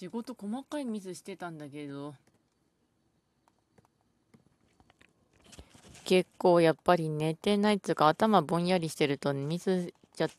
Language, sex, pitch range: Japanese, female, 150-185 Hz